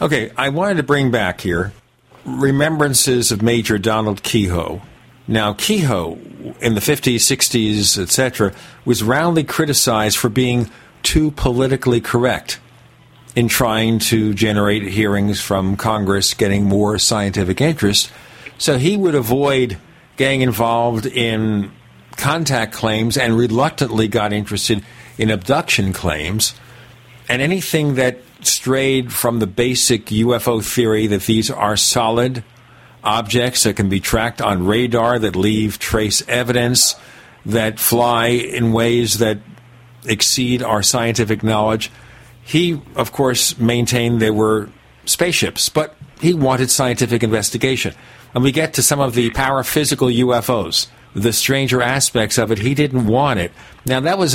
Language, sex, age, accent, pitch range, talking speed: English, male, 50-69, American, 110-130 Hz, 130 wpm